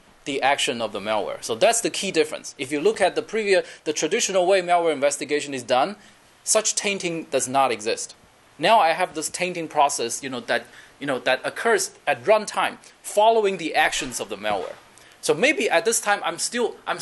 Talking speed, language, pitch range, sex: 200 wpm, English, 140-195 Hz, male